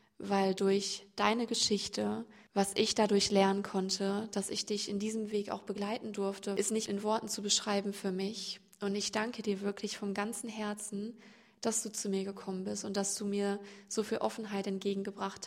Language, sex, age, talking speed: German, female, 20-39, 185 wpm